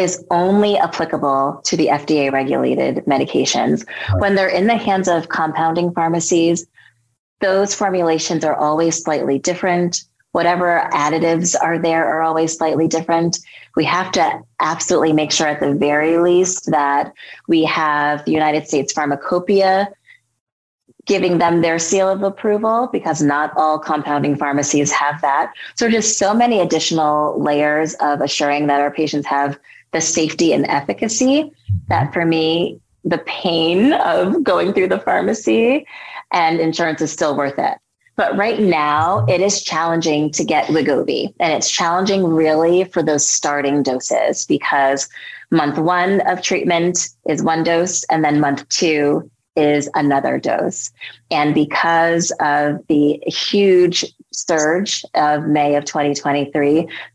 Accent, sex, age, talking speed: American, female, 30-49, 140 wpm